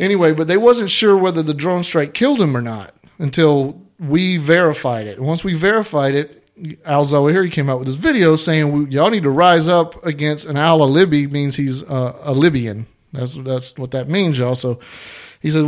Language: English